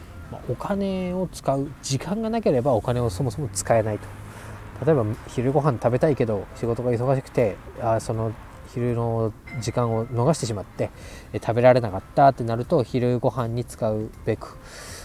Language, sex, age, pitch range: Japanese, male, 20-39, 105-140 Hz